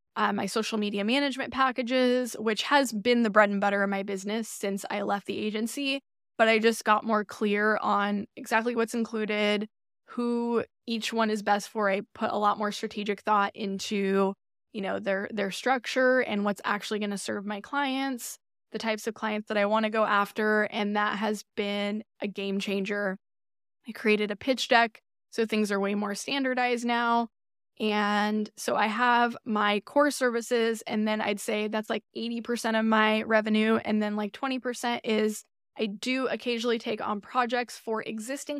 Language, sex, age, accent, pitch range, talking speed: English, female, 10-29, American, 210-240 Hz, 180 wpm